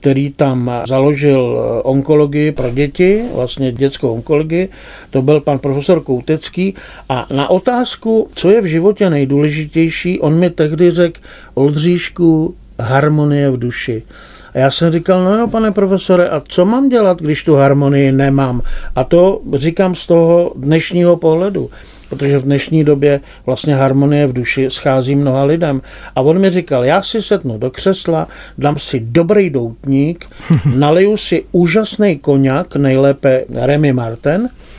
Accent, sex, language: native, male, Czech